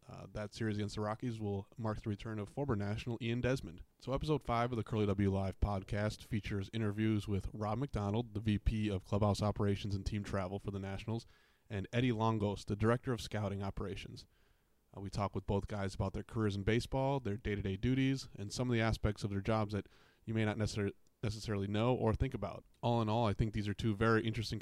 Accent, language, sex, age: American, English, male, 30-49